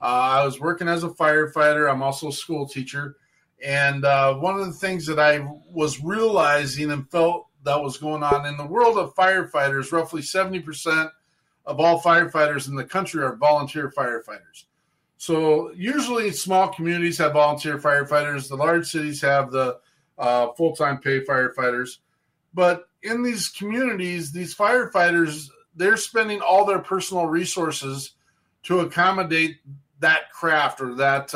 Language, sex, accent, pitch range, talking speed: English, male, American, 140-175 Hz, 150 wpm